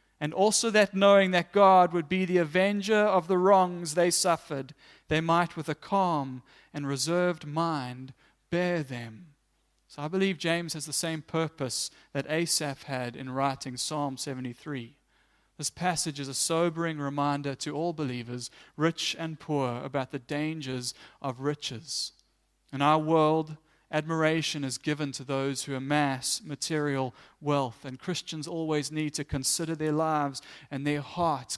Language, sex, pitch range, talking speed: English, male, 140-175 Hz, 150 wpm